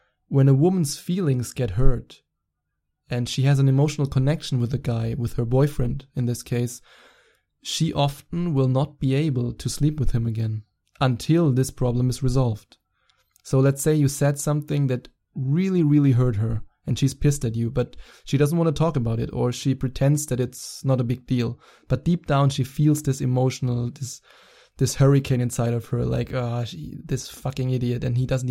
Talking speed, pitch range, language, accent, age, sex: 195 wpm, 120-140 Hz, English, German, 20-39, male